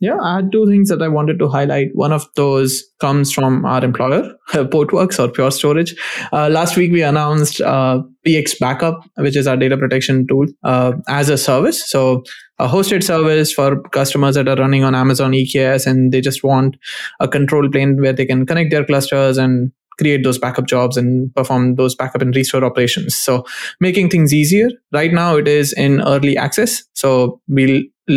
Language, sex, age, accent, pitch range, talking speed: English, male, 20-39, Indian, 130-150 Hz, 190 wpm